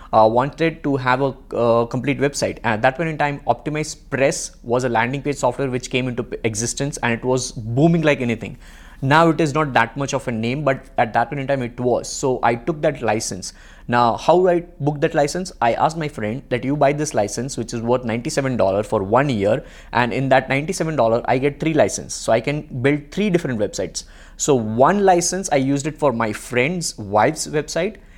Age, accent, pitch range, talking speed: 20-39, Indian, 125-175 Hz, 215 wpm